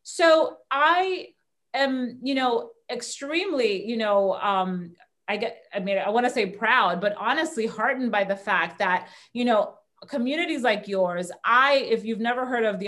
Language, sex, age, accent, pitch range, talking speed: English, female, 30-49, American, 195-240 Hz, 170 wpm